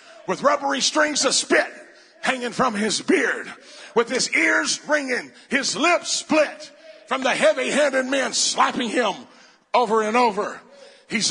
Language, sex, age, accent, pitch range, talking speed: English, male, 50-69, American, 240-300 Hz, 140 wpm